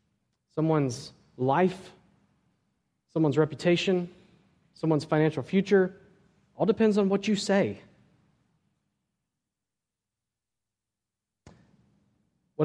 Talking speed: 65 wpm